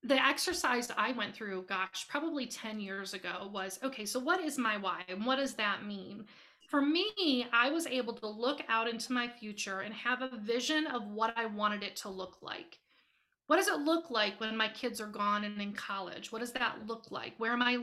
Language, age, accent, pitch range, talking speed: English, 30-49, American, 215-270 Hz, 220 wpm